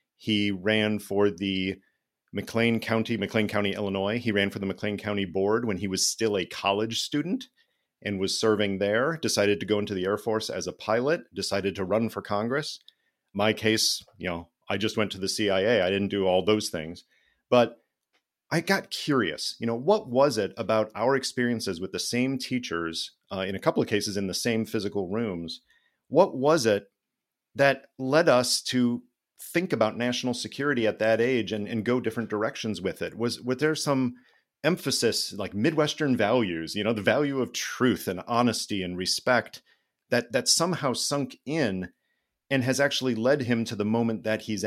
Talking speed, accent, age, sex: 185 wpm, American, 40-59, male